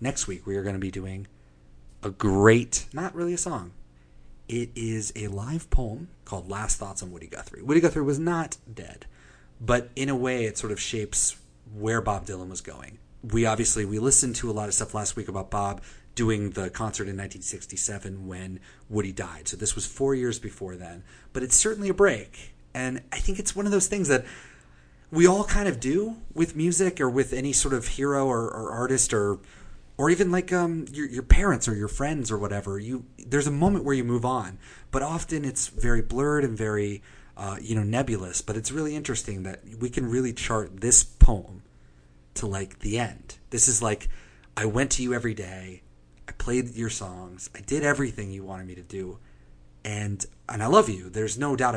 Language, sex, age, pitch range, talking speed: English, male, 30-49, 95-130 Hz, 205 wpm